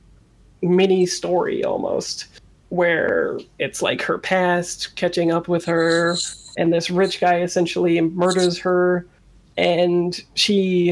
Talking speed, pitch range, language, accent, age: 115 wpm, 175-195 Hz, English, American, 20-39